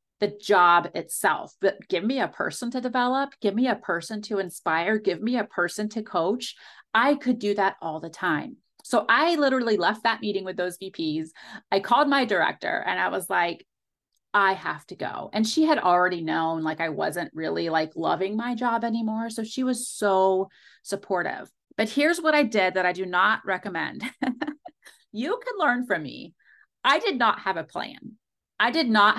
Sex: female